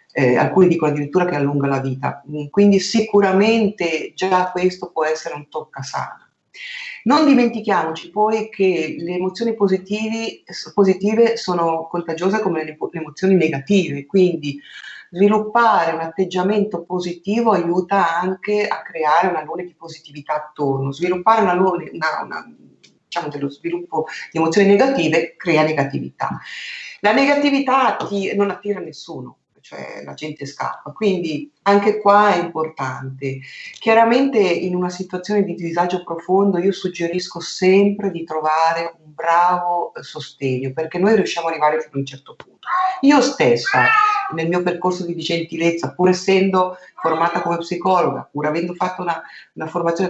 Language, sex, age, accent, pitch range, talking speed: Italian, female, 40-59, native, 165-205 Hz, 140 wpm